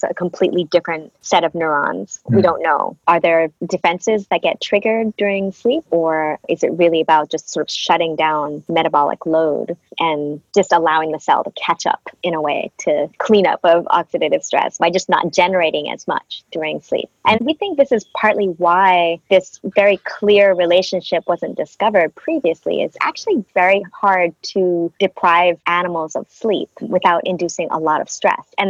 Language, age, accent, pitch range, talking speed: English, 30-49, American, 165-200 Hz, 175 wpm